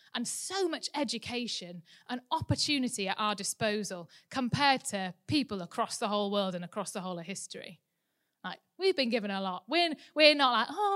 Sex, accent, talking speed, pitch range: female, British, 180 wpm, 195-275 Hz